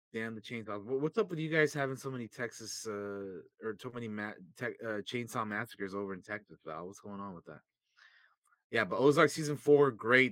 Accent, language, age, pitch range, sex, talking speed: American, English, 20-39, 105-135 Hz, male, 210 wpm